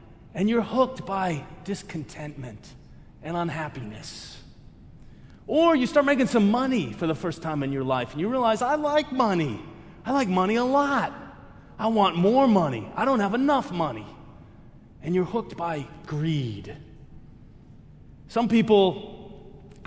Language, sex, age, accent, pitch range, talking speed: English, male, 30-49, American, 165-230 Hz, 140 wpm